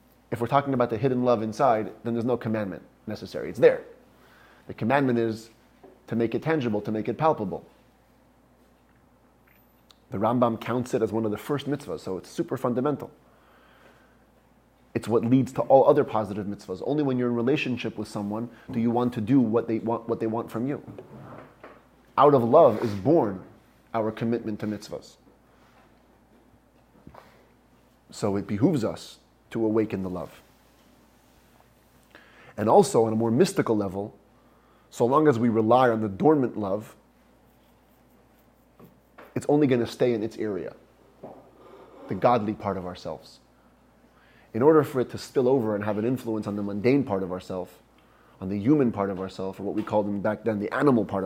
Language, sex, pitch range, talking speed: English, male, 105-125 Hz, 170 wpm